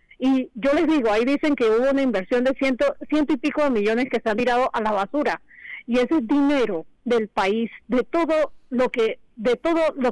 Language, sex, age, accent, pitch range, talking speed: Spanish, female, 40-59, American, 225-275 Hz, 200 wpm